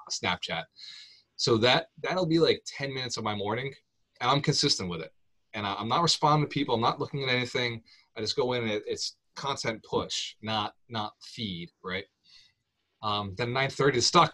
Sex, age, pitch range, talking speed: male, 20-39, 100-125 Hz, 185 wpm